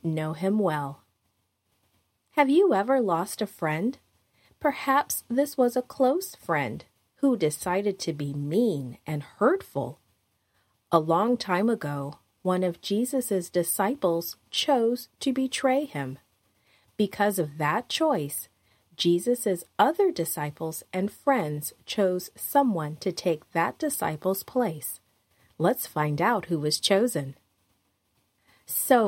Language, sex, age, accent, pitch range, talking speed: English, female, 40-59, American, 150-235 Hz, 120 wpm